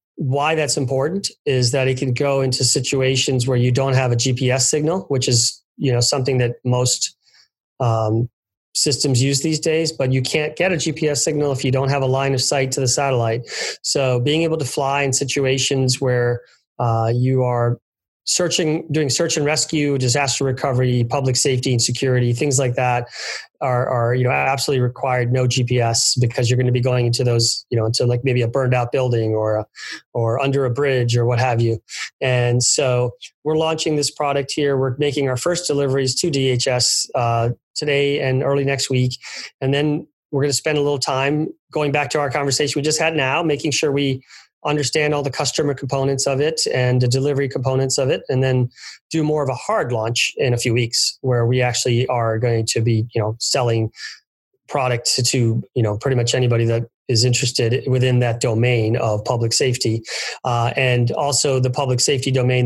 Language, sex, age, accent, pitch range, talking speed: English, male, 30-49, American, 120-140 Hz, 195 wpm